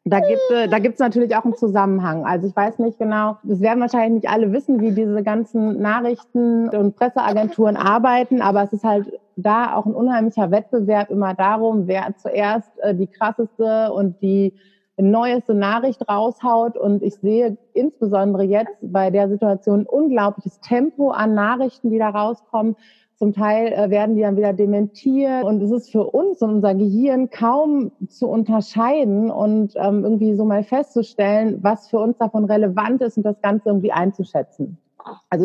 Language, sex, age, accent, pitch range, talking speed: German, female, 30-49, German, 200-230 Hz, 170 wpm